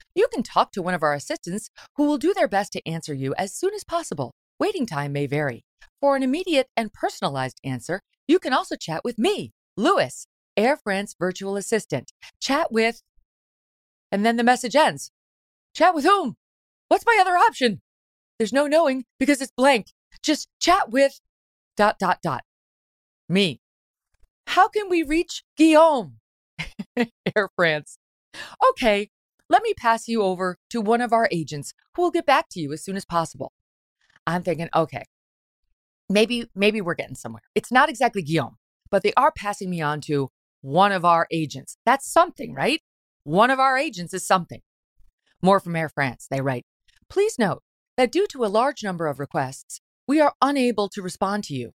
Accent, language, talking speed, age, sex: American, English, 170 wpm, 40-59, female